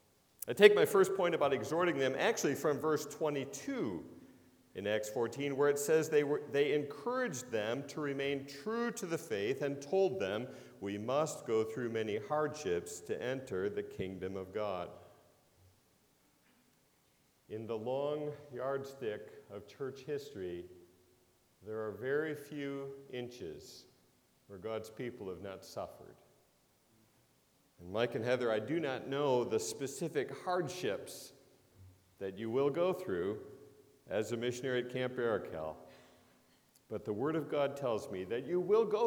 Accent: American